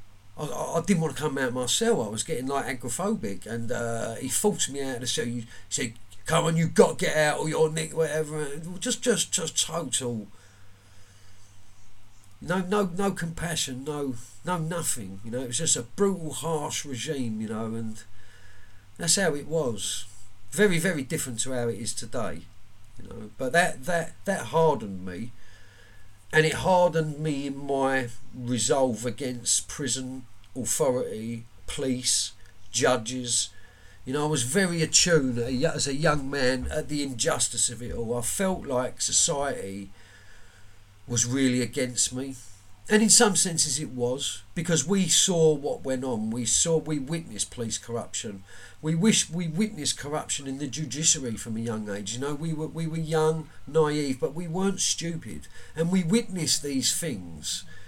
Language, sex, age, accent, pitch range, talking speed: English, male, 40-59, British, 110-160 Hz, 170 wpm